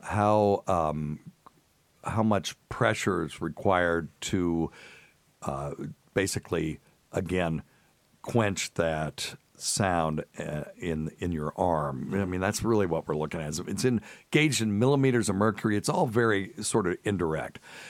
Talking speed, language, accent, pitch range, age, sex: 135 wpm, English, American, 80-110 Hz, 60-79, male